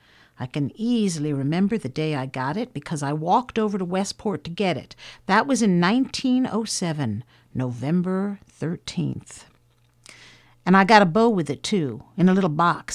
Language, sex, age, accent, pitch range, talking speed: English, female, 50-69, American, 135-195 Hz, 165 wpm